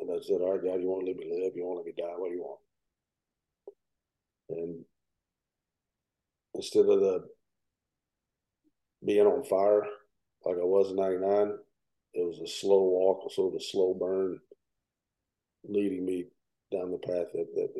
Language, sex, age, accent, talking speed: English, male, 50-69, American, 170 wpm